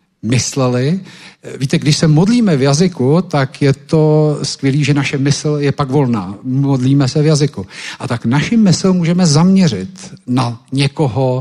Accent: native